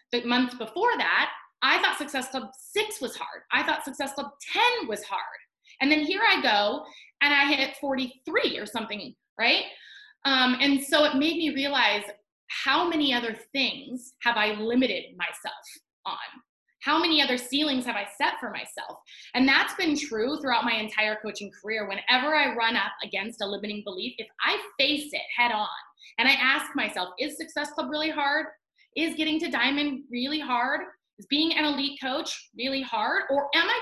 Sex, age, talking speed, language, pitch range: female, 20-39, 185 wpm, English, 235-305 Hz